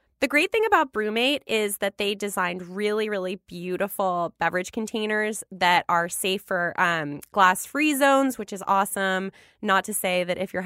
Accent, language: American, English